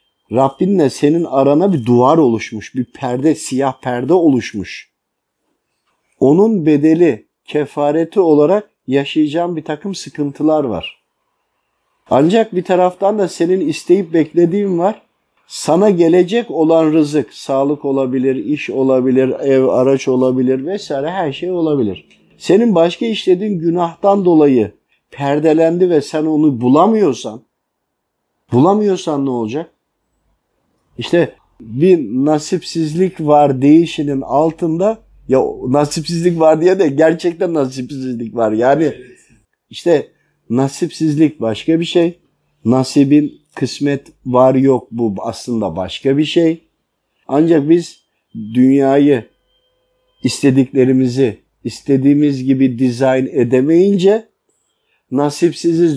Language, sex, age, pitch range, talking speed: Turkish, male, 50-69, 135-175 Hz, 100 wpm